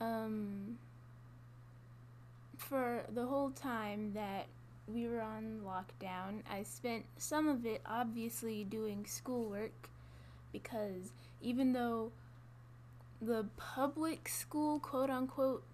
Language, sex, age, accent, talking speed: English, female, 10-29, American, 95 wpm